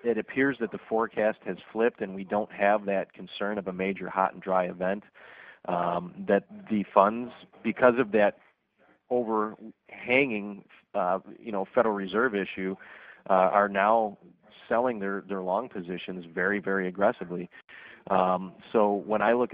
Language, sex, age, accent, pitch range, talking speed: English, male, 40-59, American, 95-115 Hz, 155 wpm